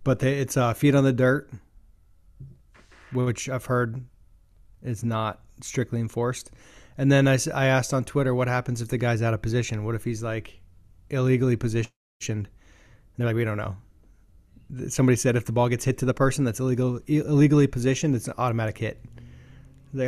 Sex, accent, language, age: male, American, English, 20-39